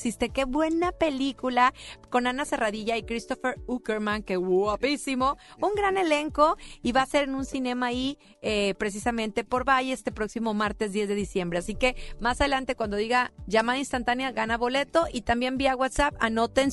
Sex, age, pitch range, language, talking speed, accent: female, 40-59, 215-290 Hz, Spanish, 170 wpm, Mexican